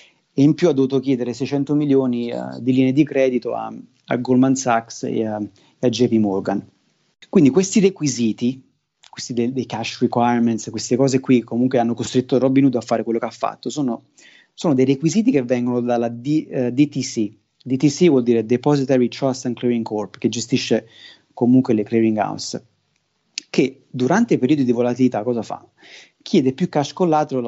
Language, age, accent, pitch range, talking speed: Italian, 30-49, native, 115-140 Hz, 175 wpm